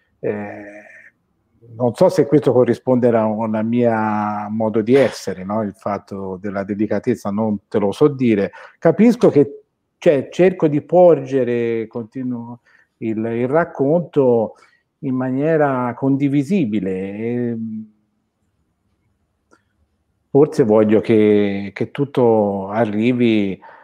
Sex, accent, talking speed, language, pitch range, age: male, native, 105 wpm, Italian, 105-150 Hz, 50-69